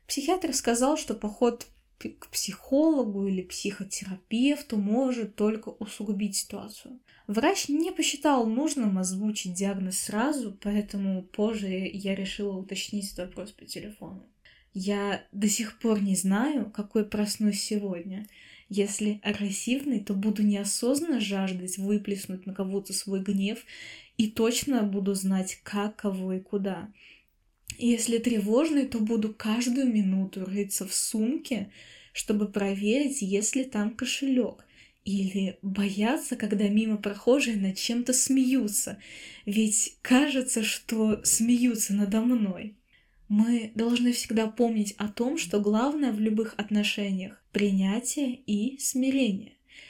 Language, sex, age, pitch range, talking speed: Russian, female, 20-39, 200-240 Hz, 120 wpm